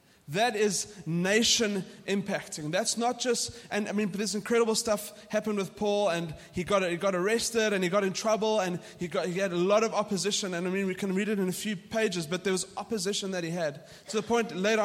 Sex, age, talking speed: male, 20-39, 240 wpm